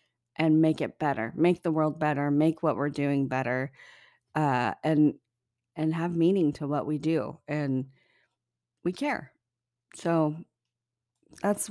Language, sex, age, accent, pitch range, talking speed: English, female, 40-59, American, 140-170 Hz, 140 wpm